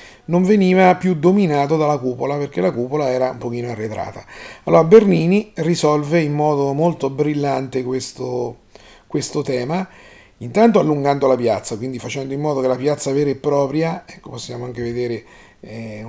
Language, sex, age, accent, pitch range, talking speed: Italian, male, 40-59, native, 125-160 Hz, 155 wpm